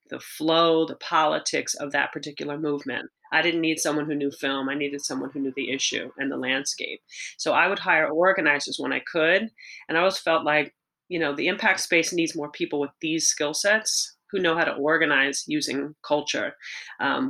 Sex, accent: female, American